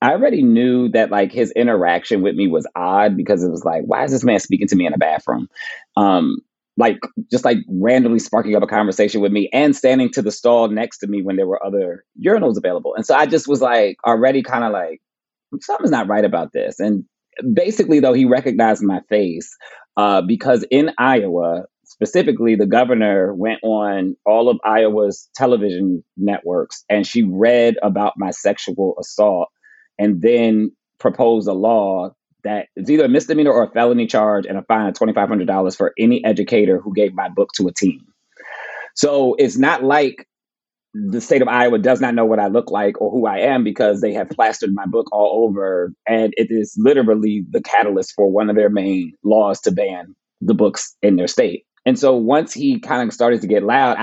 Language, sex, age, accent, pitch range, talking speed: English, male, 30-49, American, 105-140 Hz, 200 wpm